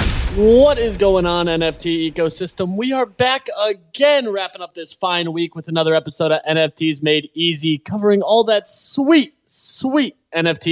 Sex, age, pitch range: male, 20-39, 165-210 Hz